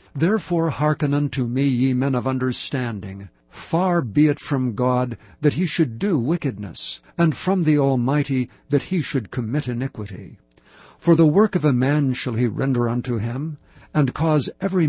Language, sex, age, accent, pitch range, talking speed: English, male, 60-79, American, 120-150 Hz, 165 wpm